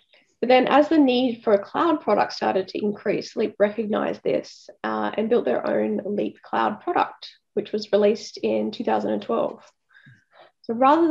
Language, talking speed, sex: English, 155 wpm, female